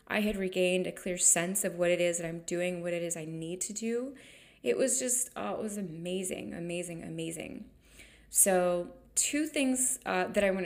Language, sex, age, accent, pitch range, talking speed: English, female, 20-39, American, 170-200 Hz, 195 wpm